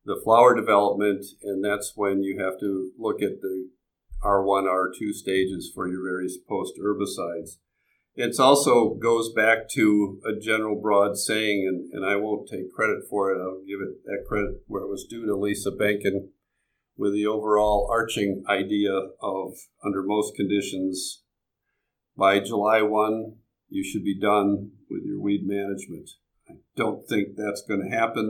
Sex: male